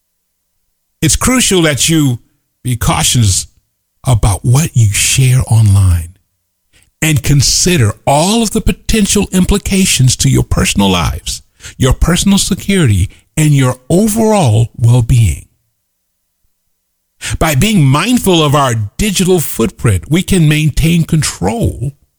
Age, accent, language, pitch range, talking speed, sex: 50-69, American, English, 95-150 Hz, 110 wpm, male